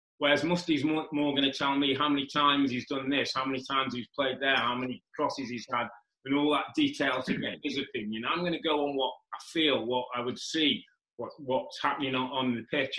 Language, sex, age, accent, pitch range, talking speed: English, male, 30-49, British, 120-145 Hz, 240 wpm